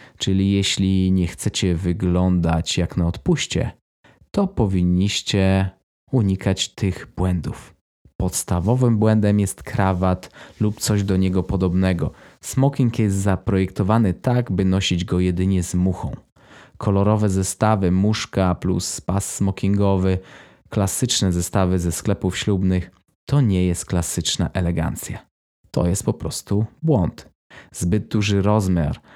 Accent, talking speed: native, 115 wpm